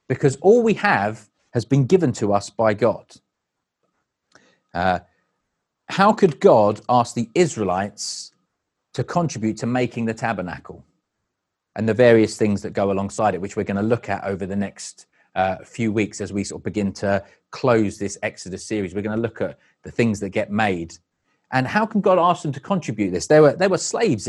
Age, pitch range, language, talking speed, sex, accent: 30-49, 110-155 Hz, English, 195 wpm, male, British